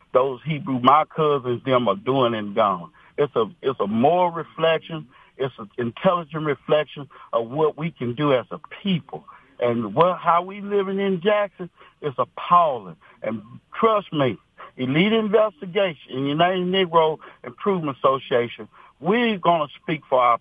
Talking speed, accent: 155 wpm, American